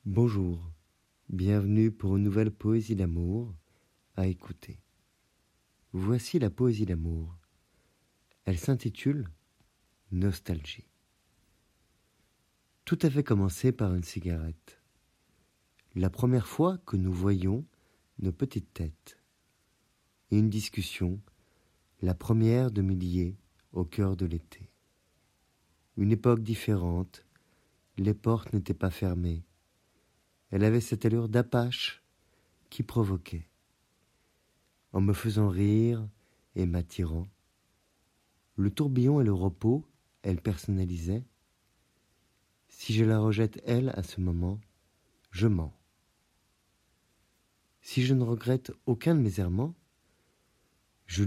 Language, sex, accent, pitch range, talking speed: French, male, French, 90-115 Hz, 105 wpm